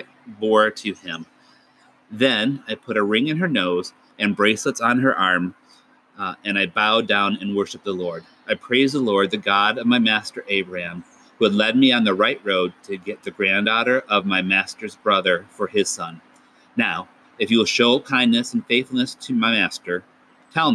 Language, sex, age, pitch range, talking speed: English, male, 40-59, 95-135 Hz, 190 wpm